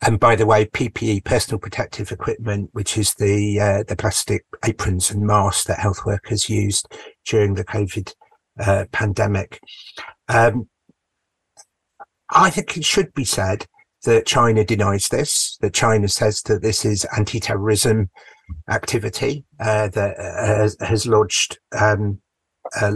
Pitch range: 105-120 Hz